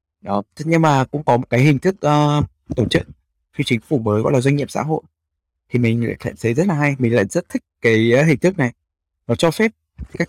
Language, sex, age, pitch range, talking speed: Vietnamese, male, 20-39, 100-135 Hz, 240 wpm